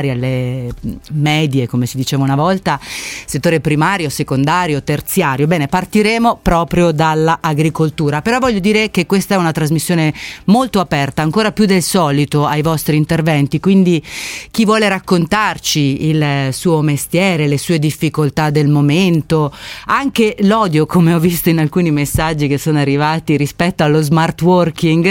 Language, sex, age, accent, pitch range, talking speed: Italian, female, 30-49, native, 145-180 Hz, 140 wpm